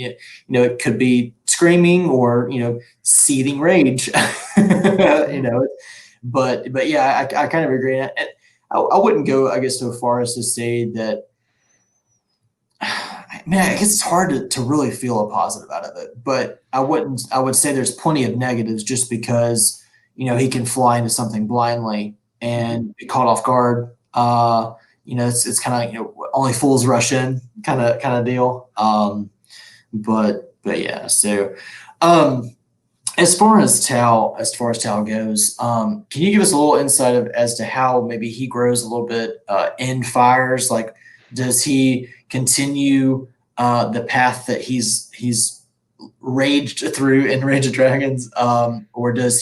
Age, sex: 20-39, male